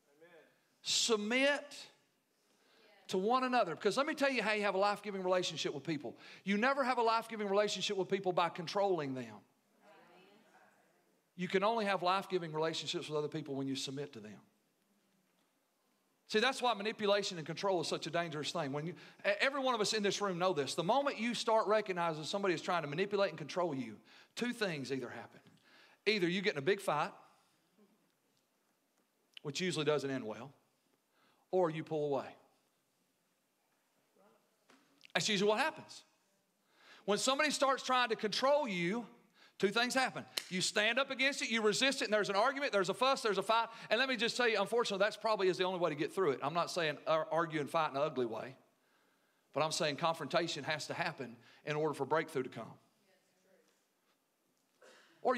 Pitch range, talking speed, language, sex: 160-225 Hz, 185 wpm, English, male